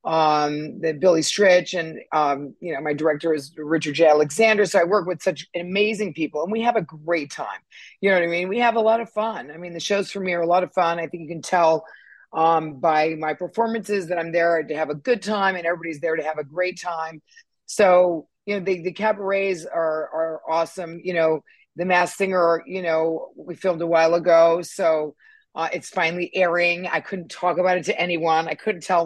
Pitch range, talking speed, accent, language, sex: 160-205 Hz, 225 wpm, American, English, female